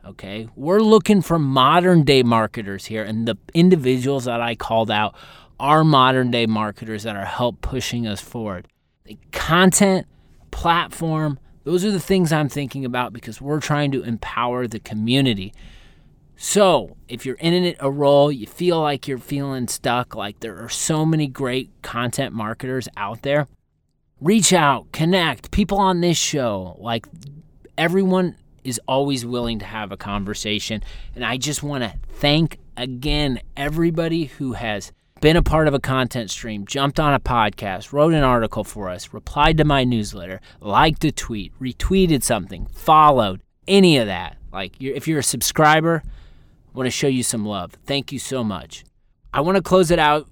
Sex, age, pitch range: male, 30-49, 110-150 Hz